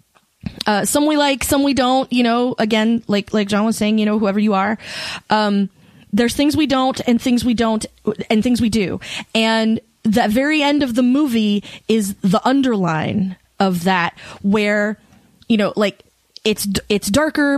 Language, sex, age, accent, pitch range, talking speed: English, female, 20-39, American, 210-255 Hz, 180 wpm